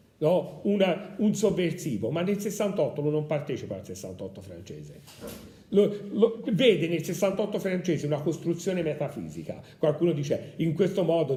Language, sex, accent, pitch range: Italian, male, native, 120-190 Hz